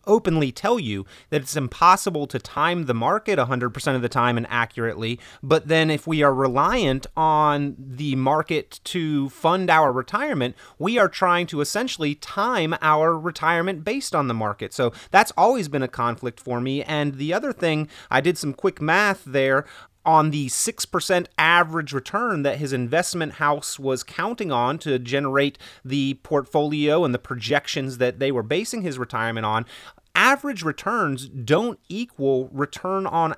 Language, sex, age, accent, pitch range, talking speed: English, male, 30-49, American, 130-170 Hz, 165 wpm